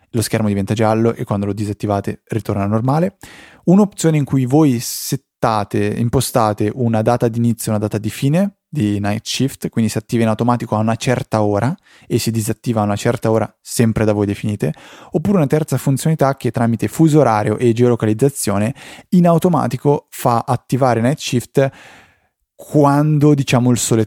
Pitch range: 110-135 Hz